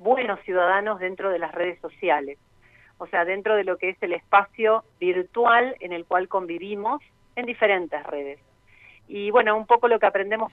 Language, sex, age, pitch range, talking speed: Spanish, female, 40-59, 170-210 Hz, 175 wpm